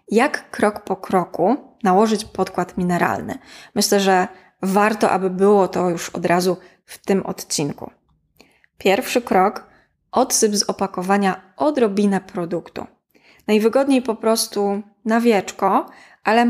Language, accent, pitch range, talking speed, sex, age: Polish, native, 190-230 Hz, 115 wpm, female, 20-39